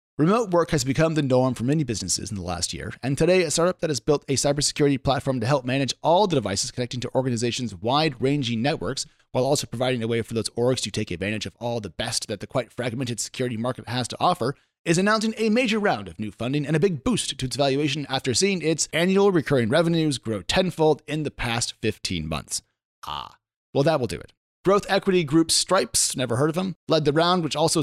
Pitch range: 125-160 Hz